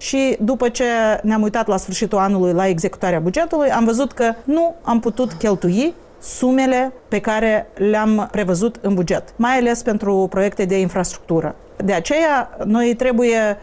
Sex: female